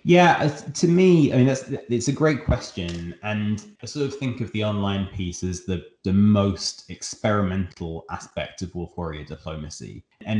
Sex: male